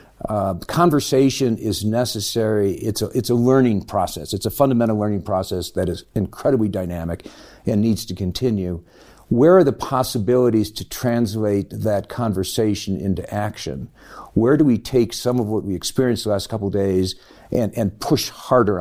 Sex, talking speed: male, 160 wpm